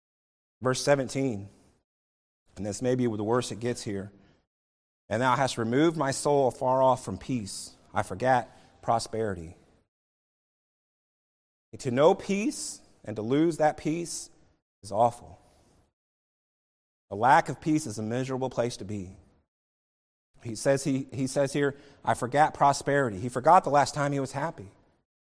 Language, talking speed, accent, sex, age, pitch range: English, 140 wpm, American, male, 30-49, 110-155 Hz